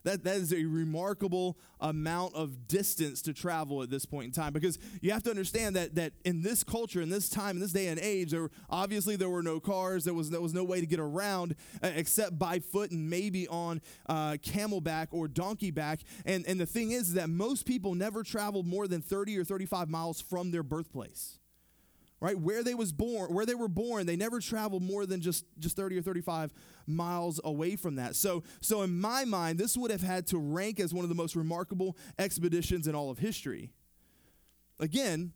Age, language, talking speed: 20-39, English, 215 wpm